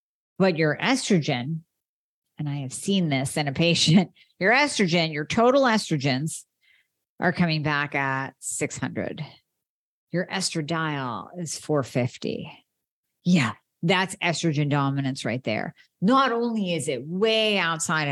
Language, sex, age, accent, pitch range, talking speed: English, female, 50-69, American, 145-190 Hz, 125 wpm